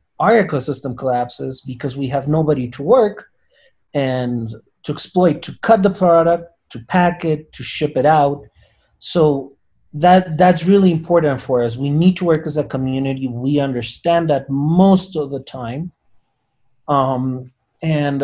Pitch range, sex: 135-175 Hz, male